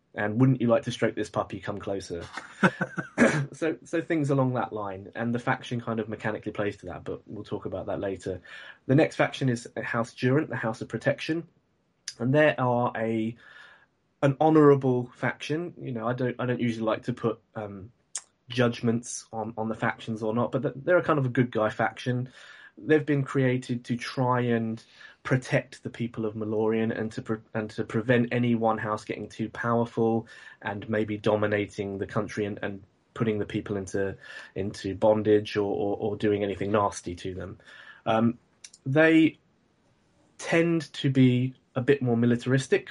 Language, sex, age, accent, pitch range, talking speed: English, male, 20-39, British, 110-125 Hz, 180 wpm